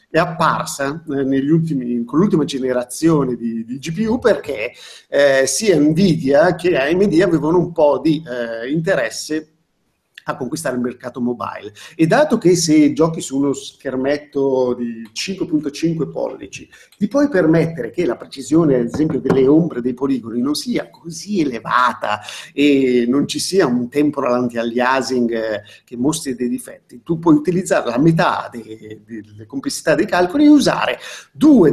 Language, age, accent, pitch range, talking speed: Italian, 50-69, native, 120-165 Hz, 150 wpm